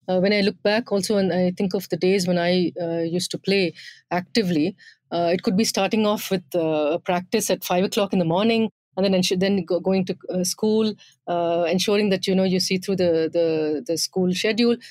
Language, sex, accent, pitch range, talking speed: English, female, Indian, 175-220 Hz, 230 wpm